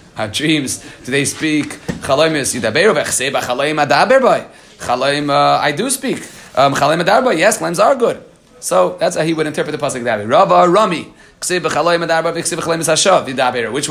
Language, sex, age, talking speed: Hebrew, male, 30-49, 95 wpm